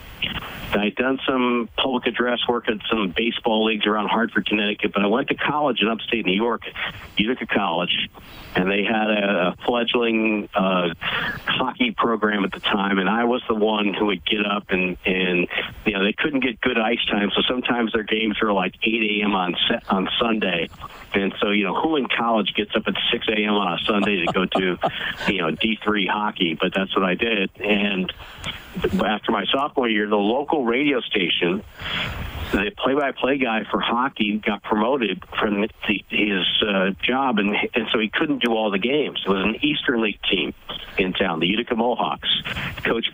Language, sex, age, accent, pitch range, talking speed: English, male, 50-69, American, 100-115 Hz, 185 wpm